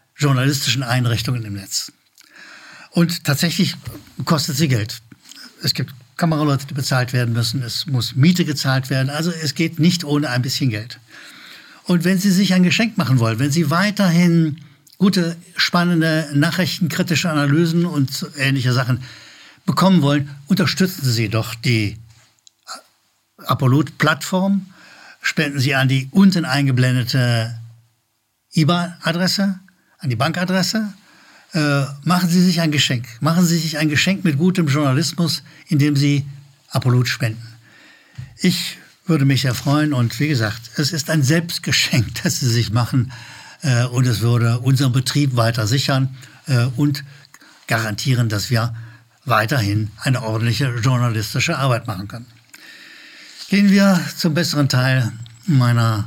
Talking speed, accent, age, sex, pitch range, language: 135 wpm, German, 60-79, male, 120-165 Hz, German